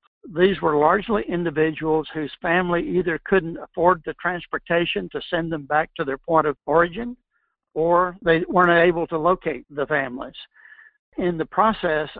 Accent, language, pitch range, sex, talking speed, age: American, English, 150-180 Hz, male, 150 wpm, 60-79